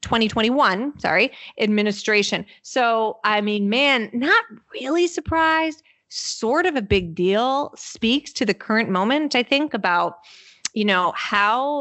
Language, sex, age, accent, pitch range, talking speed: English, female, 30-49, American, 190-245 Hz, 130 wpm